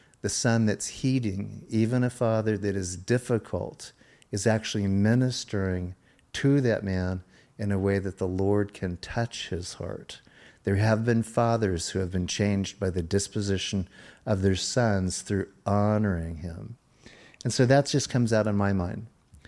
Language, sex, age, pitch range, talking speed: English, male, 50-69, 100-115 Hz, 160 wpm